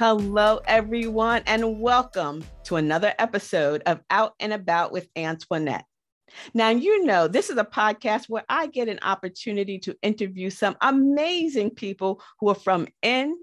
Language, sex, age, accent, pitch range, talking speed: English, female, 50-69, American, 175-240 Hz, 150 wpm